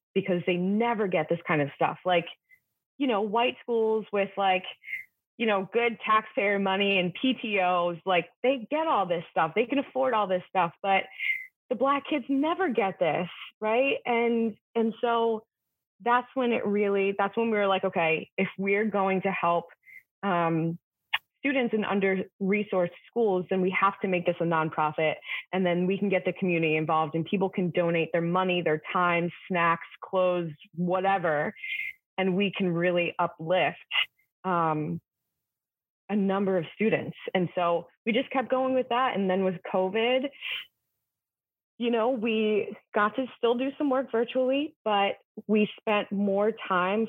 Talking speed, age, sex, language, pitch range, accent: 165 wpm, 20-39, female, English, 175-235 Hz, American